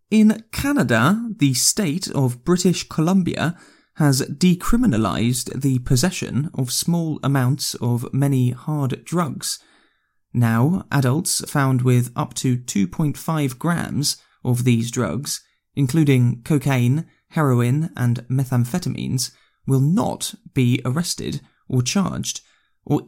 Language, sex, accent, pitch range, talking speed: English, male, British, 125-155 Hz, 105 wpm